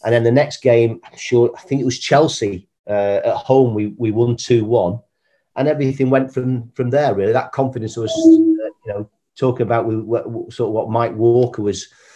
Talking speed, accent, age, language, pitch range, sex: 200 wpm, British, 40-59, English, 110-130 Hz, male